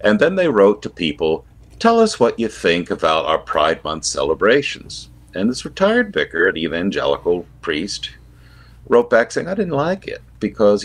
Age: 60-79